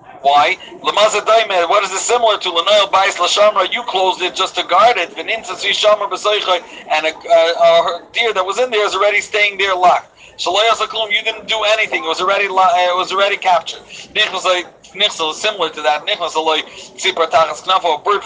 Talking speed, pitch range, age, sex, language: 145 wpm, 165-200 Hz, 40-59, male, English